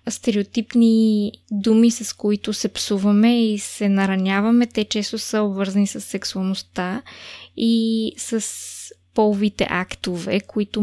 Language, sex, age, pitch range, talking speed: Bulgarian, female, 20-39, 195-225 Hz, 110 wpm